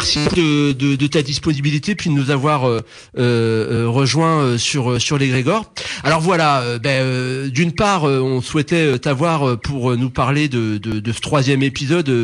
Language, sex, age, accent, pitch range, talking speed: French, male, 40-59, French, 125-160 Hz, 165 wpm